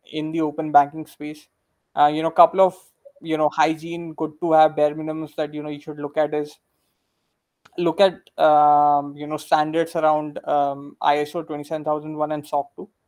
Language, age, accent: English, 20-39, Indian